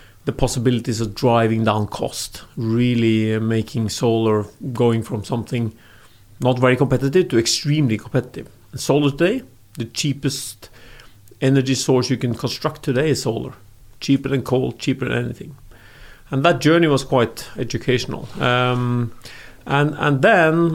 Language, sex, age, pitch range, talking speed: English, male, 40-59, 115-135 Hz, 135 wpm